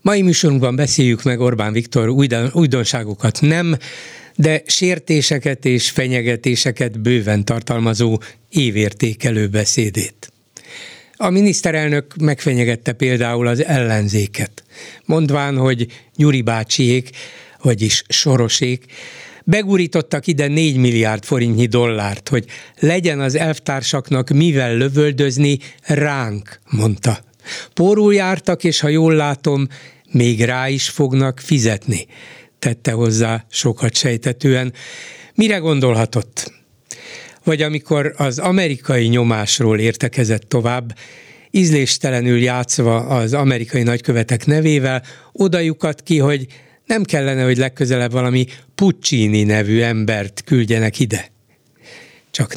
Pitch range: 115-150 Hz